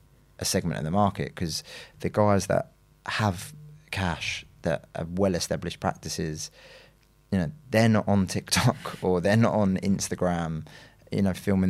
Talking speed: 150 wpm